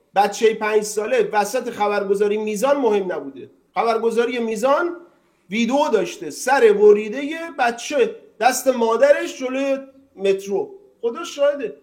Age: 40-59